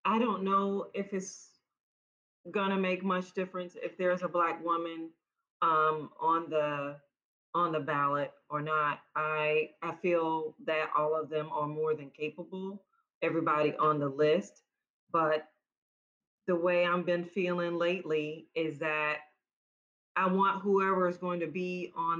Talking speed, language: 145 wpm, English